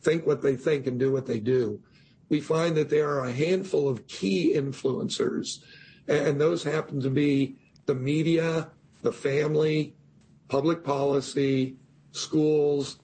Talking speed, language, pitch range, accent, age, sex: 145 wpm, English, 140-160 Hz, American, 50-69, male